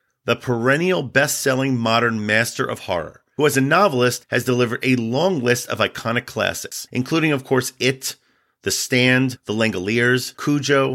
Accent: American